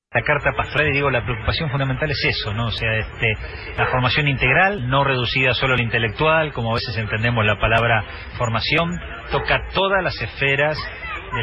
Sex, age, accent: male, 40-59, Argentinian